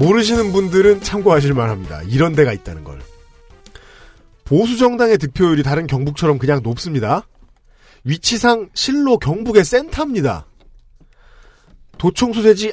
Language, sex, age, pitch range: Korean, male, 40-59, 140-220 Hz